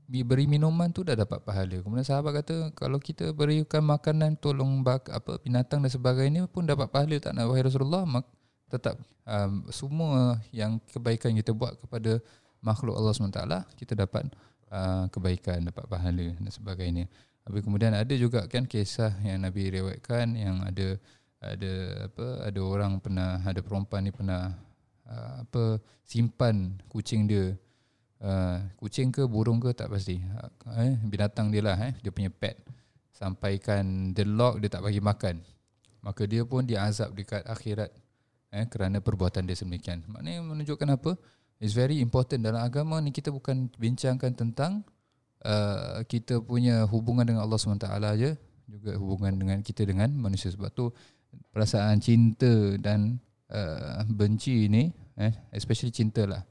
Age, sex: 20-39, male